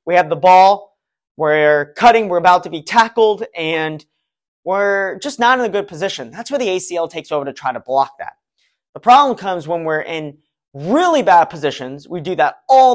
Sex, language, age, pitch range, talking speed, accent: male, English, 20-39, 150-225 Hz, 200 wpm, American